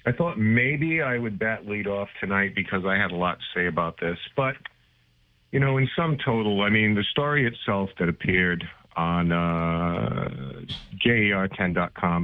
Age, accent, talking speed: 50-69, American, 160 wpm